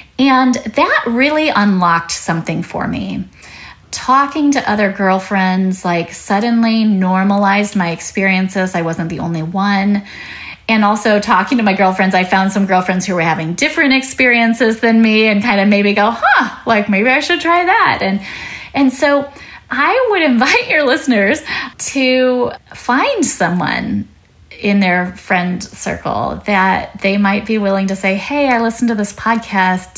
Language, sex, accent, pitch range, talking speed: English, female, American, 175-220 Hz, 155 wpm